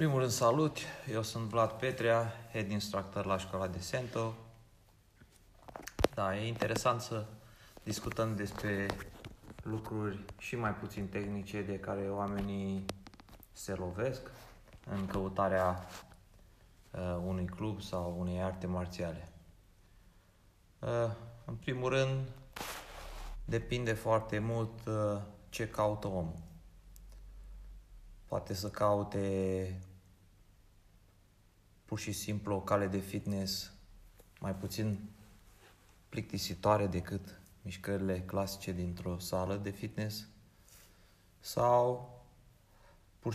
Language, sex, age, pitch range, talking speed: Romanian, male, 30-49, 95-110 Hz, 100 wpm